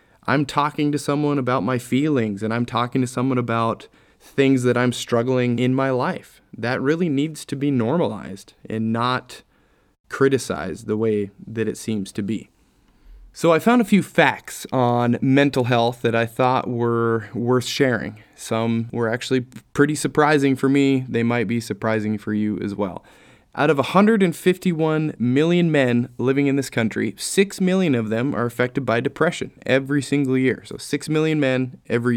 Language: English